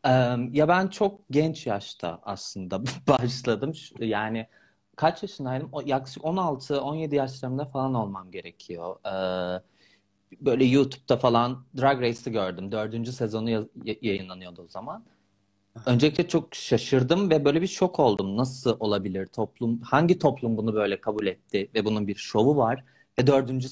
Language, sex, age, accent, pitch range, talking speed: Turkish, male, 40-59, native, 110-160 Hz, 130 wpm